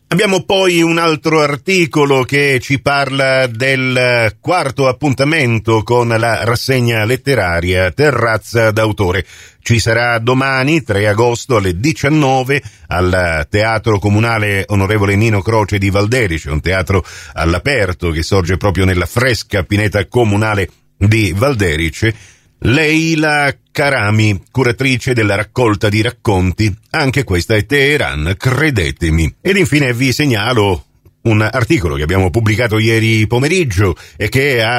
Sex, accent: male, native